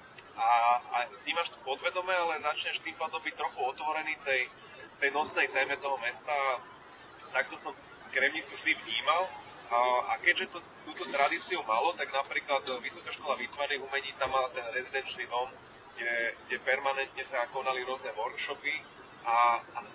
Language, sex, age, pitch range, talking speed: Slovak, male, 30-49, 130-150 Hz, 150 wpm